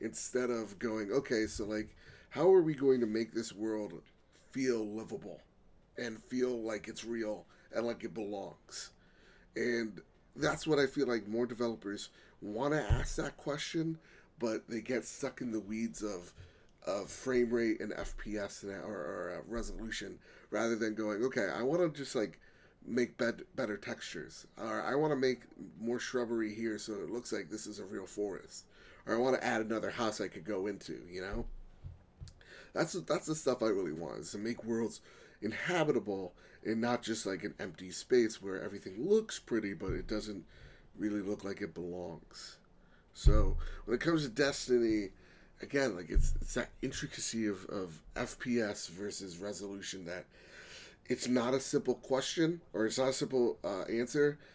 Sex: male